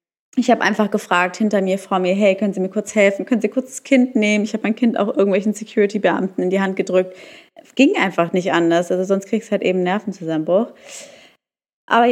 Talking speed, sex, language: 220 wpm, female, German